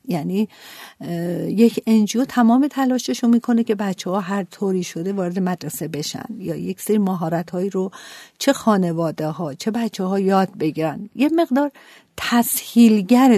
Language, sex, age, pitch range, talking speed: Persian, female, 50-69, 175-220 Hz, 140 wpm